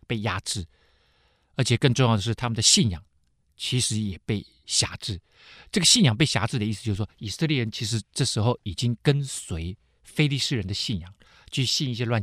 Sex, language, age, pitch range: male, Chinese, 50-69, 105-155 Hz